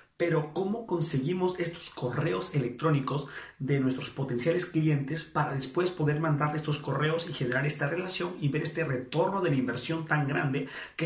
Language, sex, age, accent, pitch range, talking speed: Spanish, male, 30-49, Mexican, 140-170 Hz, 165 wpm